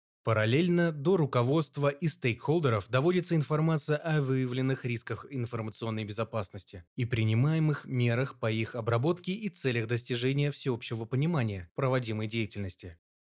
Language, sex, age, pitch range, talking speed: Russian, male, 20-39, 115-155 Hz, 115 wpm